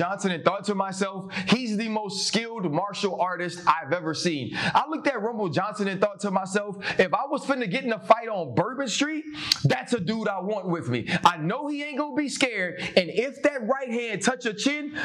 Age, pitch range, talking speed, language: 30-49, 180-250 Hz, 225 wpm, English